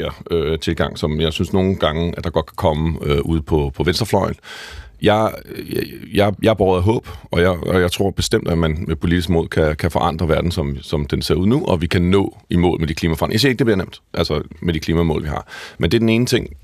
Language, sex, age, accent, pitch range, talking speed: Danish, male, 30-49, native, 85-105 Hz, 255 wpm